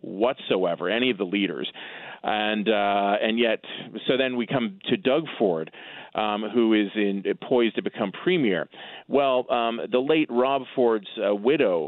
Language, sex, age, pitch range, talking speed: English, male, 30-49, 100-130 Hz, 160 wpm